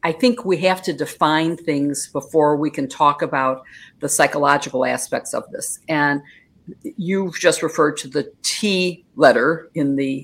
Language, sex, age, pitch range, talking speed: English, female, 50-69, 150-185 Hz, 160 wpm